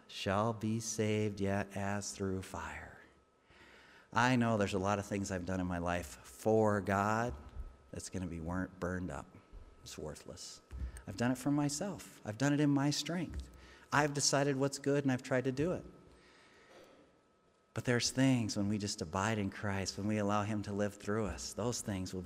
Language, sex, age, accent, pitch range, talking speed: English, male, 40-59, American, 95-120 Hz, 190 wpm